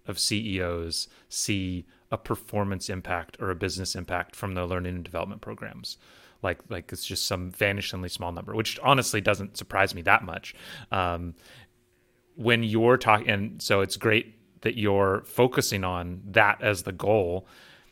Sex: male